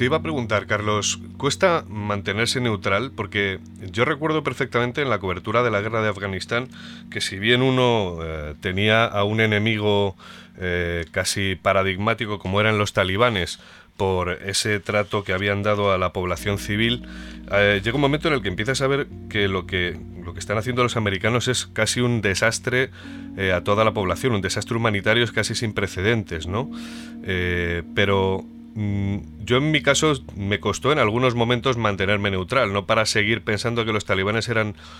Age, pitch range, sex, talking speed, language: 30-49, 95-120 Hz, male, 175 wpm, Spanish